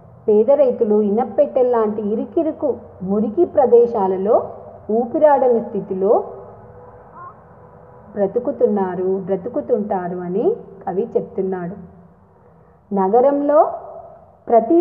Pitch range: 200-285 Hz